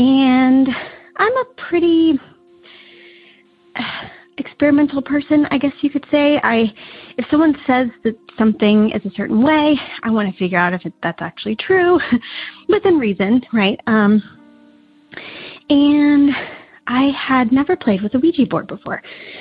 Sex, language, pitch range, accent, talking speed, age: female, English, 200-290 Hz, American, 140 wpm, 30-49